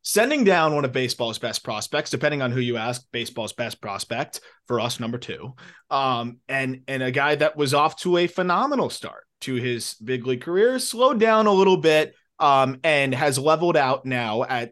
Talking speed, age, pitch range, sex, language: 195 wpm, 20-39, 120-165 Hz, male, English